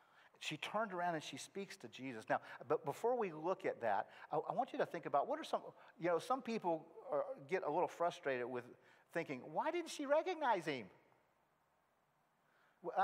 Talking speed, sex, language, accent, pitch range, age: 195 wpm, male, English, American, 170-220 Hz, 50-69